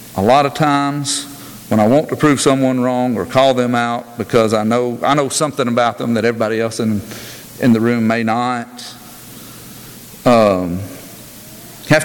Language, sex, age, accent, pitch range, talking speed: English, male, 50-69, American, 115-140 Hz, 175 wpm